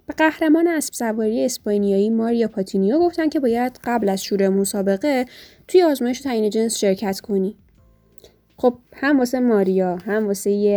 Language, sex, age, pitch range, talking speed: Persian, female, 20-39, 200-250 Hz, 150 wpm